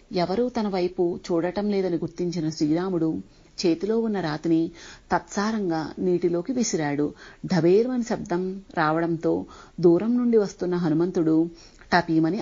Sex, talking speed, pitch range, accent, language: female, 100 wpm, 165-205 Hz, native, Telugu